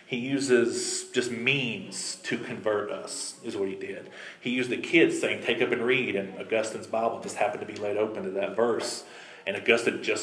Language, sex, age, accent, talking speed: English, male, 40-59, American, 205 wpm